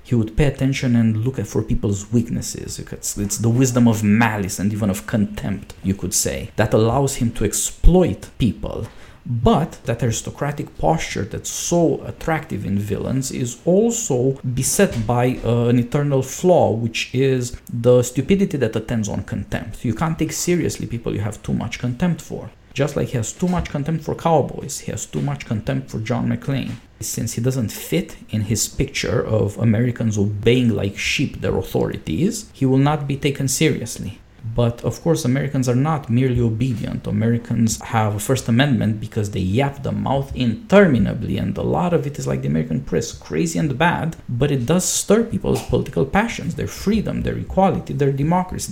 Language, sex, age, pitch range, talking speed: English, male, 50-69, 110-140 Hz, 175 wpm